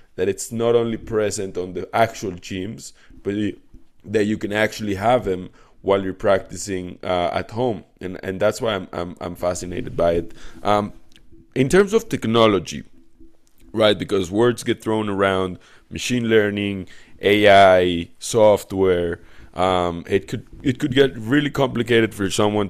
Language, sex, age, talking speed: English, male, 20-39, 155 wpm